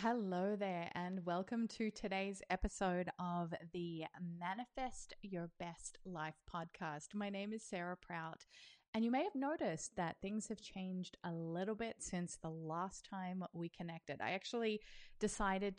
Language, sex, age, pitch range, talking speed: English, female, 20-39, 170-215 Hz, 150 wpm